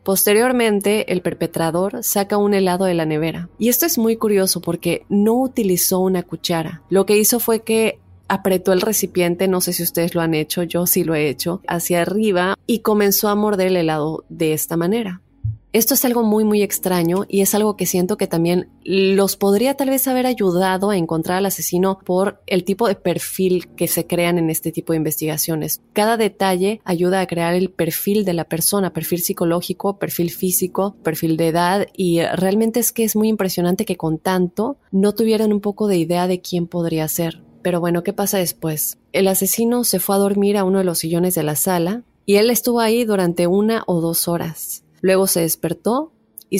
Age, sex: 20-39, female